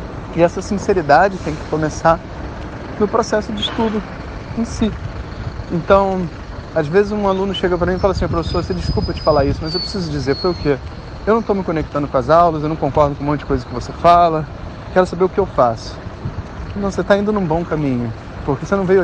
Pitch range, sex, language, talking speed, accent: 130-190 Hz, male, Portuguese, 225 wpm, Brazilian